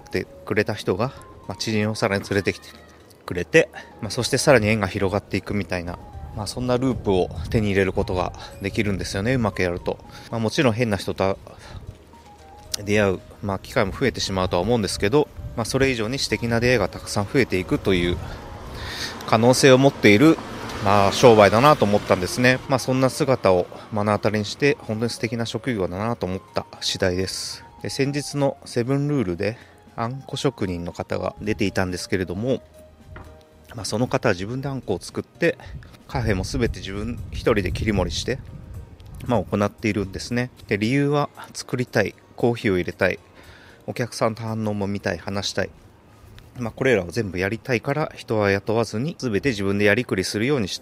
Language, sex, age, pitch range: Japanese, male, 30-49, 95-120 Hz